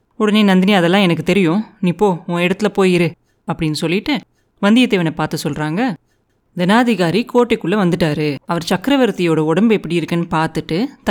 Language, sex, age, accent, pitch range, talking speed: Tamil, female, 30-49, native, 165-225 Hz, 130 wpm